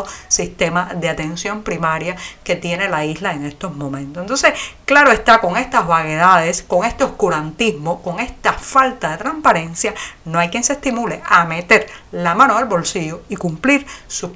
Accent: American